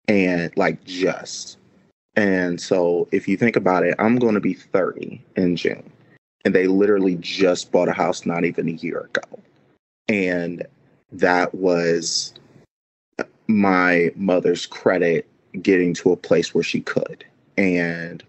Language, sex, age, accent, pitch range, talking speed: English, male, 30-49, American, 85-95 Hz, 140 wpm